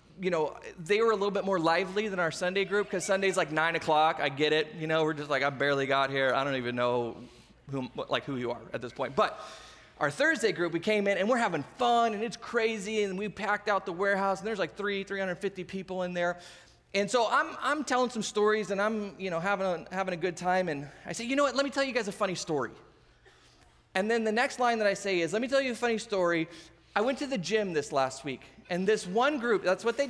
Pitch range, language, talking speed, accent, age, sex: 170-230 Hz, English, 265 wpm, American, 20-39, male